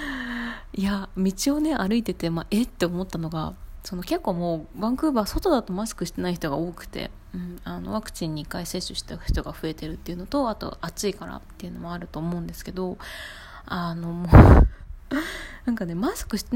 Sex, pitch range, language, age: female, 175-245 Hz, Japanese, 20-39